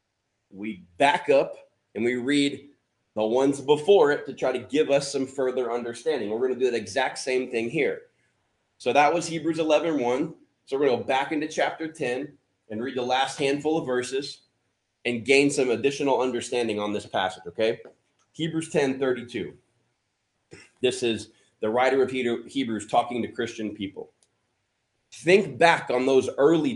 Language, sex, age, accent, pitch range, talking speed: English, male, 20-39, American, 120-160 Hz, 170 wpm